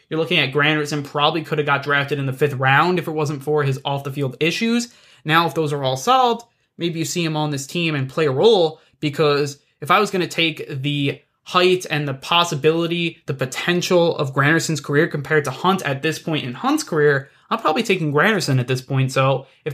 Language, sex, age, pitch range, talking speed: English, male, 20-39, 140-180 Hz, 225 wpm